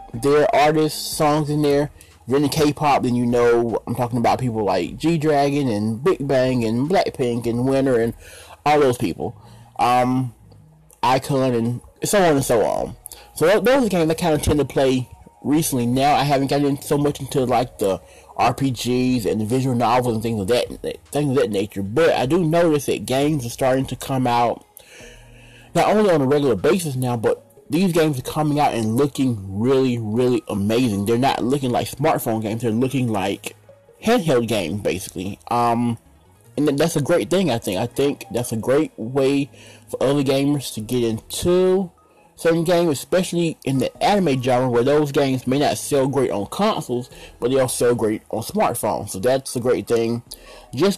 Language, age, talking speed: English, 30-49, 190 wpm